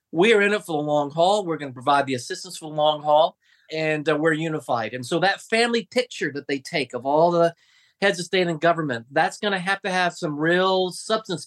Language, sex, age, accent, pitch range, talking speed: English, male, 40-59, American, 150-190 Hz, 235 wpm